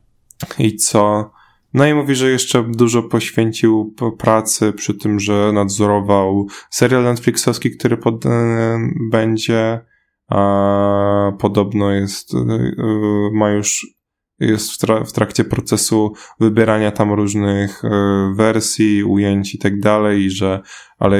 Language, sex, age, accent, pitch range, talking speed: Polish, male, 20-39, native, 100-120 Hz, 100 wpm